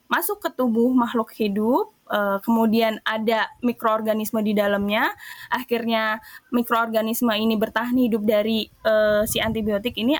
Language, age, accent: Indonesian, 10-29, native